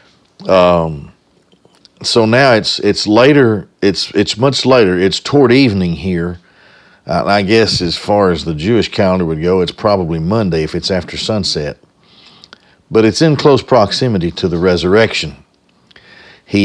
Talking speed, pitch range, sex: 150 wpm, 90-110 Hz, male